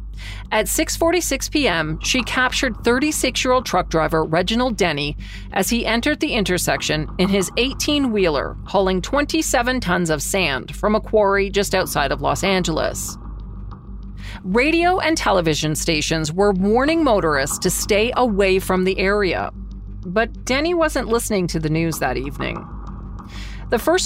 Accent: American